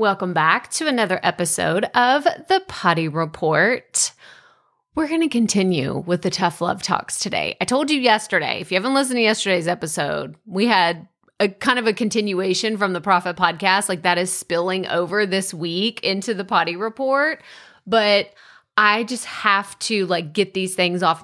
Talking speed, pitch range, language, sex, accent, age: 175 wpm, 180-230 Hz, English, female, American, 30-49